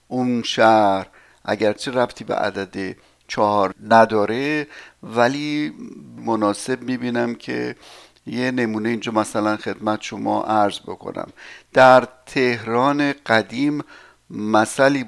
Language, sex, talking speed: Persian, male, 95 wpm